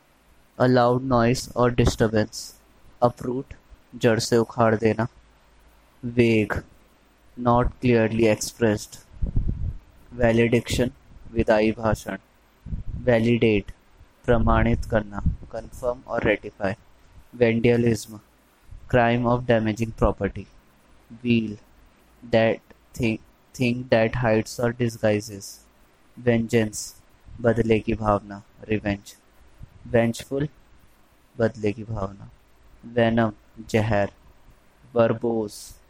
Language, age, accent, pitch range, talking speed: Hindi, 20-39, native, 100-120 Hz, 80 wpm